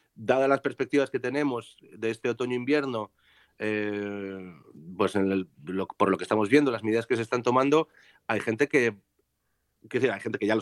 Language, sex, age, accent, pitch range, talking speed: Spanish, male, 30-49, Spanish, 120-145 Hz, 190 wpm